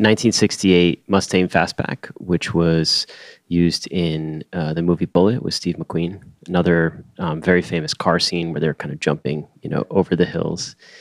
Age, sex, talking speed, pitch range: 30-49, male, 165 wpm, 80-95 Hz